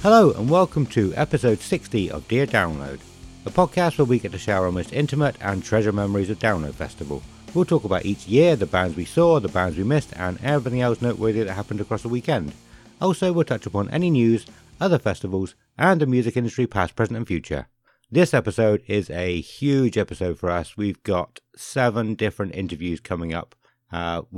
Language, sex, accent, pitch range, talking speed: English, male, British, 90-120 Hz, 195 wpm